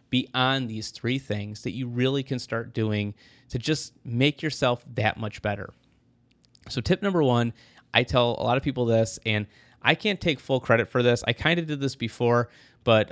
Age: 30-49